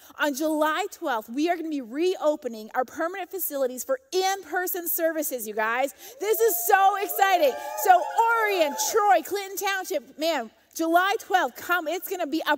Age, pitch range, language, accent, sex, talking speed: 30-49, 255-345 Hz, English, American, female, 160 wpm